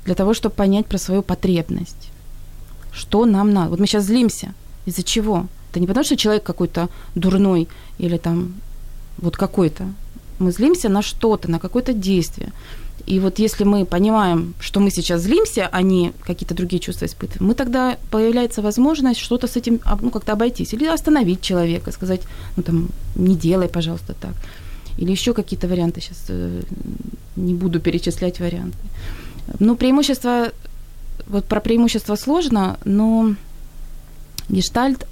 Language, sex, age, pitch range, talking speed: Ukrainian, female, 20-39, 175-220 Hz, 145 wpm